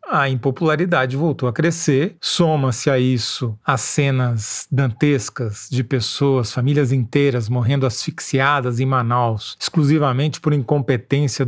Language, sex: Portuguese, male